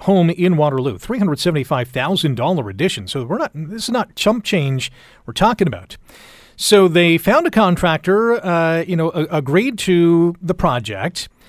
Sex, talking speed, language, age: male, 160 wpm, English, 40-59